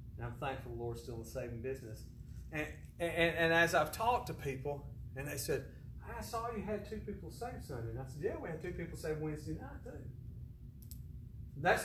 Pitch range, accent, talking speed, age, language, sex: 125-190 Hz, American, 210 wpm, 40-59, English, male